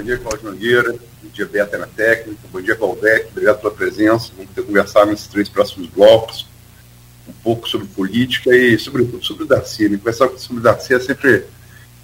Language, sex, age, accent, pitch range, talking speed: Portuguese, male, 50-69, Brazilian, 100-135 Hz, 190 wpm